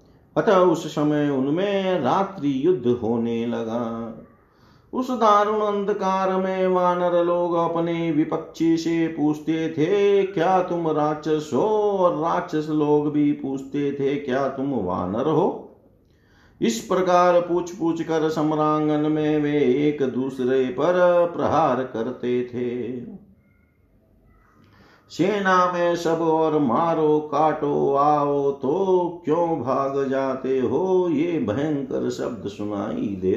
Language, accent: Hindi, native